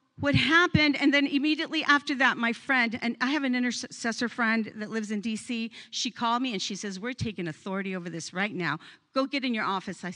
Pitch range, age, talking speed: 195-250 Hz, 50-69, 225 wpm